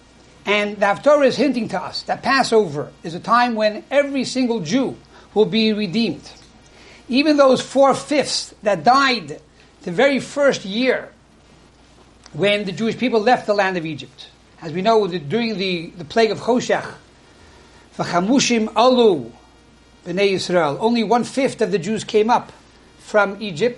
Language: English